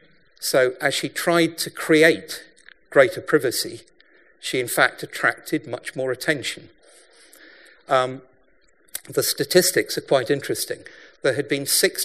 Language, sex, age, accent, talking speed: English, male, 50-69, British, 125 wpm